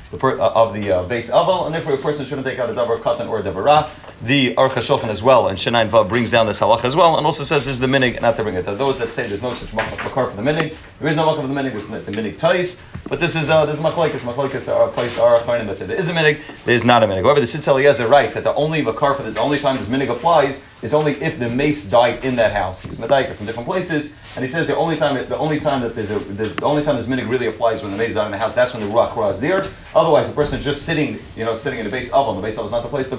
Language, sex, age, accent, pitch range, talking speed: English, male, 30-49, American, 115-145 Hz, 315 wpm